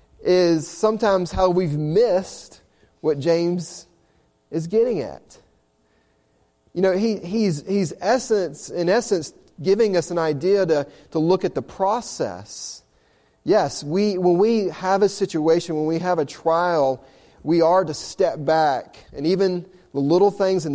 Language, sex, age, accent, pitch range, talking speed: English, male, 30-49, American, 150-190 Hz, 150 wpm